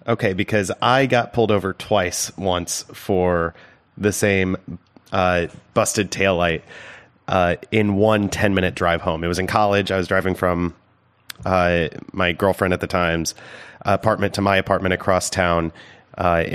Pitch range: 90-110 Hz